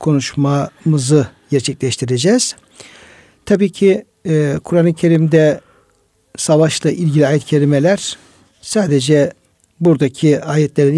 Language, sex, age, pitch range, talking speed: Turkish, male, 60-79, 130-155 Hz, 75 wpm